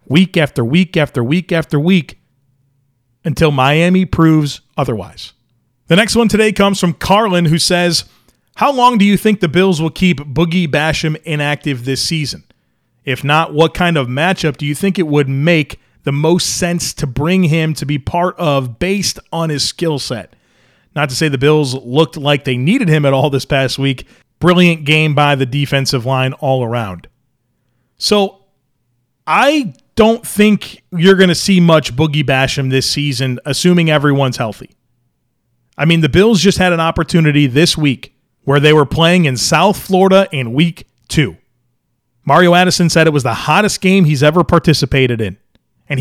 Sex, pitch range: male, 130-175 Hz